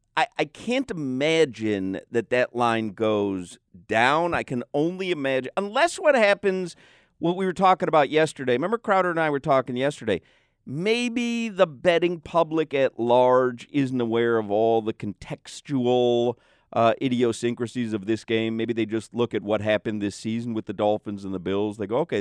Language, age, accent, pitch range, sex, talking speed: English, 50-69, American, 115-165 Hz, male, 175 wpm